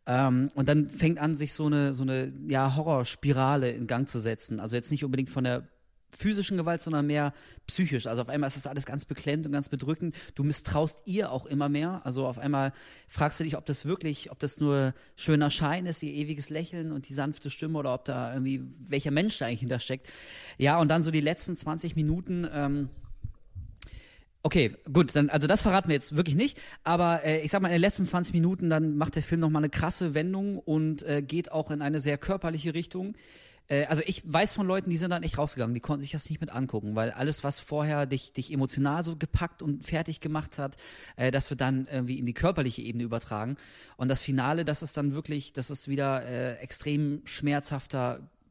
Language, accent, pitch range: German, German, 135-160 Hz